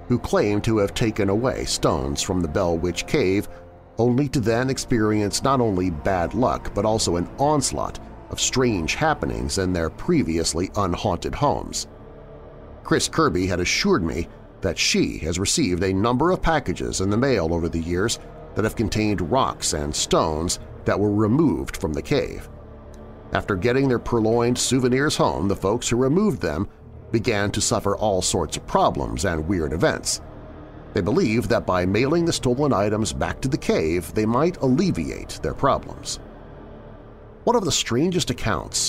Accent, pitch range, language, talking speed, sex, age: American, 85-120 Hz, English, 165 wpm, male, 40-59